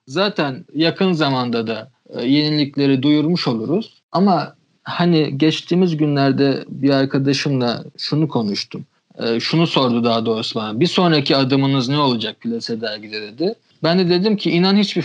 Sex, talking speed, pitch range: male, 145 wpm, 135-175 Hz